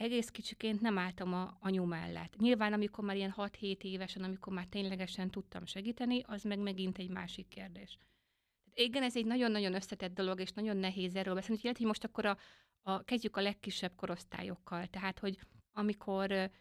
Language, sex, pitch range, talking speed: Hungarian, female, 185-210 Hz, 175 wpm